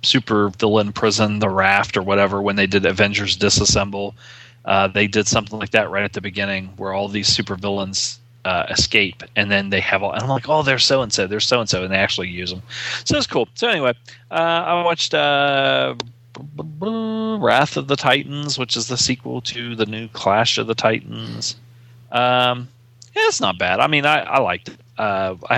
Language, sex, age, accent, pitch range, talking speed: English, male, 30-49, American, 100-125 Hz, 195 wpm